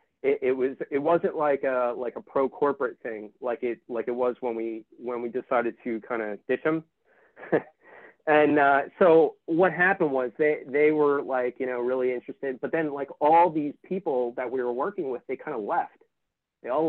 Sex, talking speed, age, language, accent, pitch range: male, 205 wpm, 30-49, English, American, 125-150 Hz